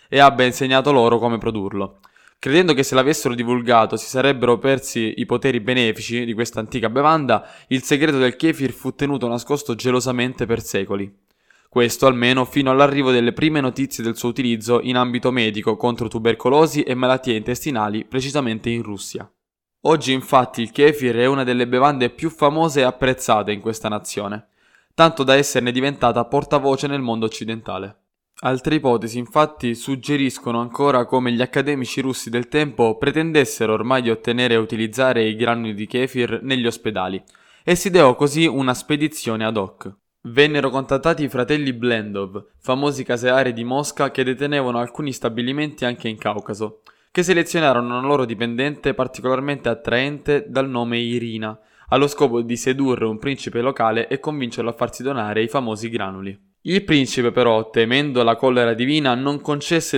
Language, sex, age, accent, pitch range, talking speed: Italian, male, 10-29, native, 115-140 Hz, 155 wpm